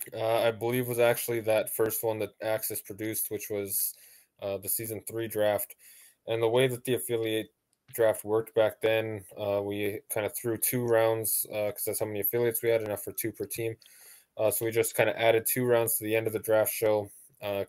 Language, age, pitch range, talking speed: English, 20-39, 105-115 Hz, 220 wpm